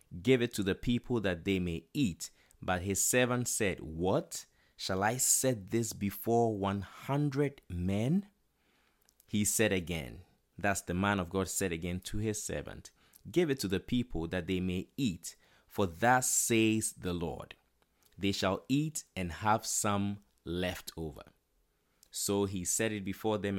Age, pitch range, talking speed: 20-39, 90-110 Hz, 160 wpm